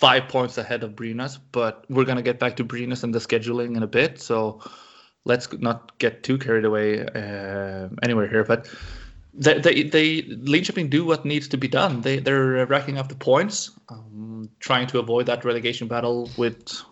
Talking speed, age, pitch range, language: 190 wpm, 20-39, 115-130 Hz, English